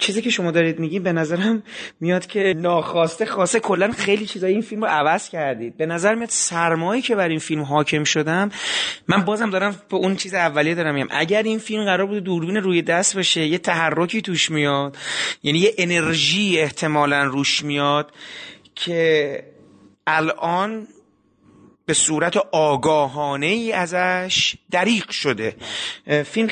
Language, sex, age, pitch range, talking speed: Persian, male, 30-49, 155-200 Hz, 150 wpm